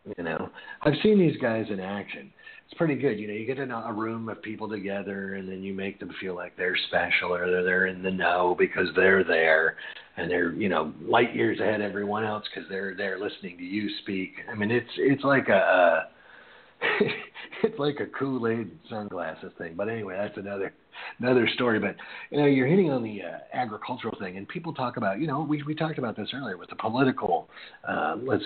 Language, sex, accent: English, male, American